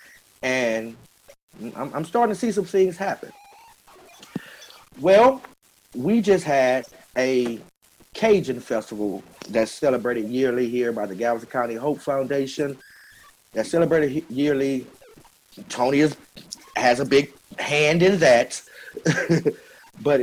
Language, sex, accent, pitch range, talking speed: English, male, American, 115-165 Hz, 110 wpm